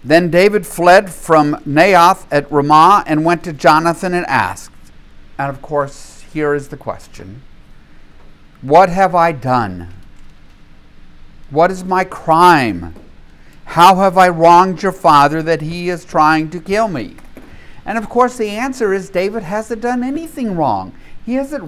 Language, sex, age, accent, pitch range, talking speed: English, male, 50-69, American, 115-180 Hz, 150 wpm